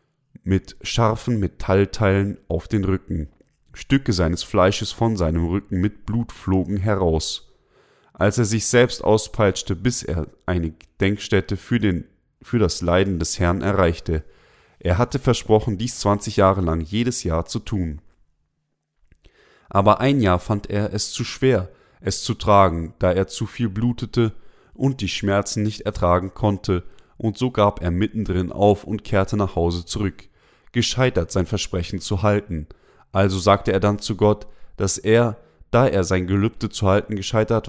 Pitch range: 90-115 Hz